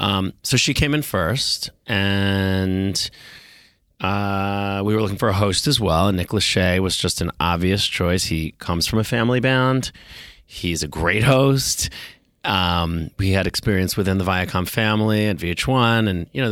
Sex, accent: male, American